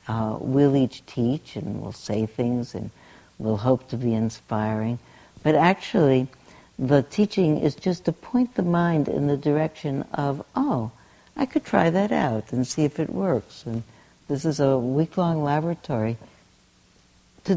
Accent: American